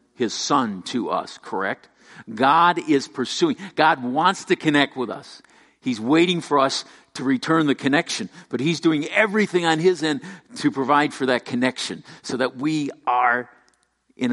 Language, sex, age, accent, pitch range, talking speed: English, male, 50-69, American, 120-190 Hz, 165 wpm